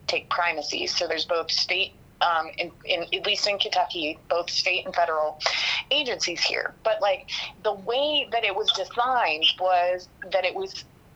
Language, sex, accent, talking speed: English, female, American, 165 wpm